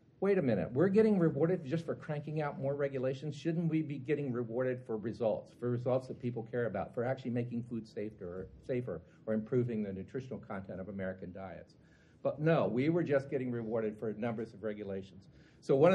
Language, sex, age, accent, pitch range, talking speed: English, male, 50-69, American, 115-155 Hz, 195 wpm